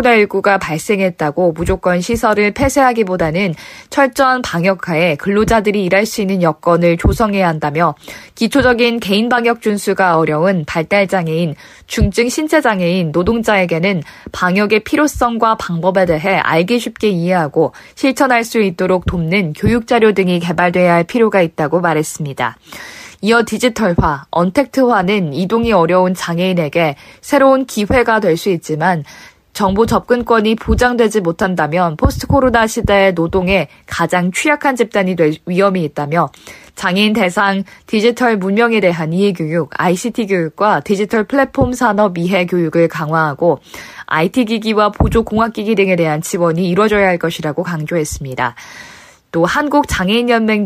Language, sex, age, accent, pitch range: Korean, female, 20-39, native, 170-230 Hz